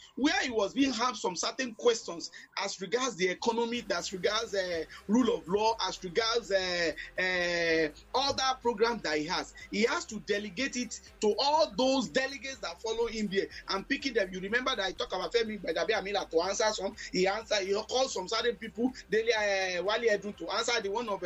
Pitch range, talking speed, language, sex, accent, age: 200-270 Hz, 200 wpm, English, male, Nigerian, 30-49